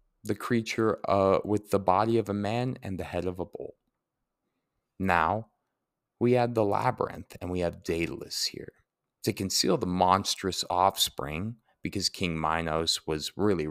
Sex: male